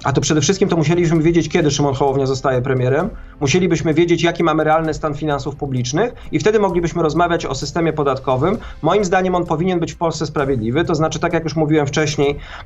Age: 40-59